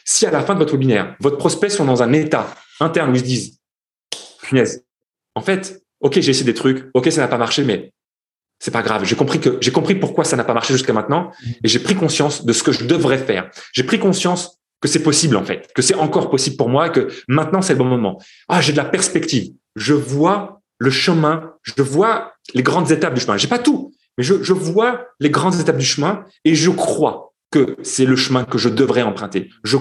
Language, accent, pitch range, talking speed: French, French, 130-185 Hz, 240 wpm